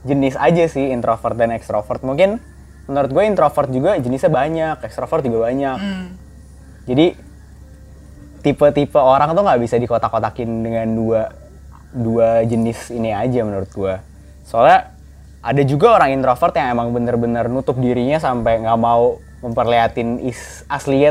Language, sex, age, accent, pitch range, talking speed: Indonesian, male, 20-39, native, 110-145 Hz, 135 wpm